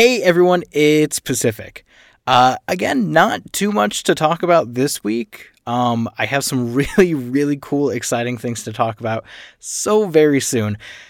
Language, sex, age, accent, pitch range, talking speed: English, male, 20-39, American, 115-155 Hz, 155 wpm